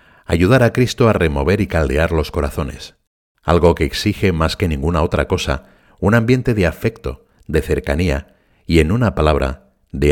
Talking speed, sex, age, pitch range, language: 165 wpm, male, 60-79, 75-100 Hz, Spanish